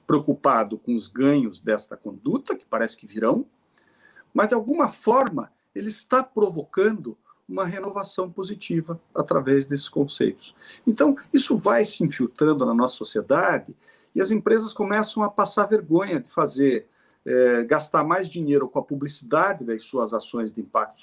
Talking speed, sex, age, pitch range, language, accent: 150 wpm, male, 50-69, 155-230 Hz, Portuguese, Brazilian